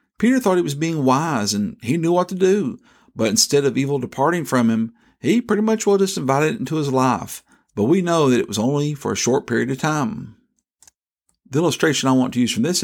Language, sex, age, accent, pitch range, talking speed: English, male, 50-69, American, 130-175 Hz, 235 wpm